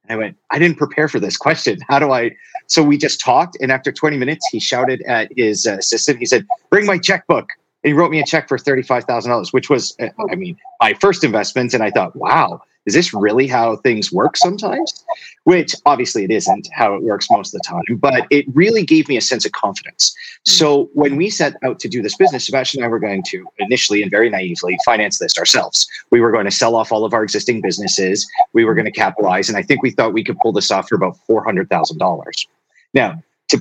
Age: 30-49